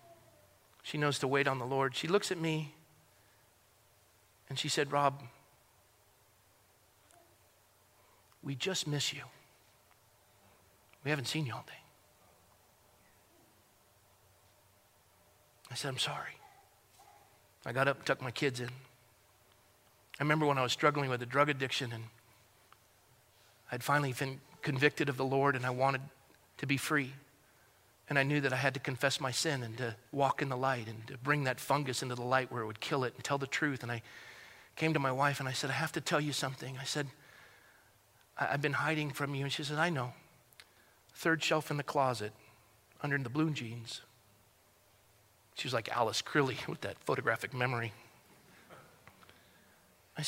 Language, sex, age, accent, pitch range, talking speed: English, male, 40-59, American, 110-145 Hz, 165 wpm